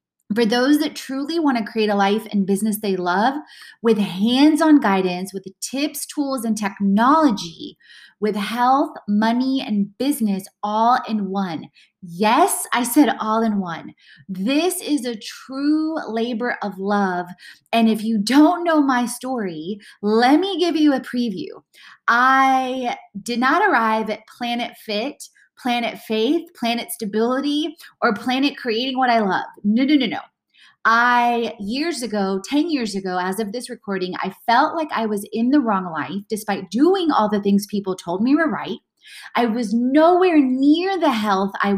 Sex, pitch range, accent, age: female, 210-280 Hz, American, 20-39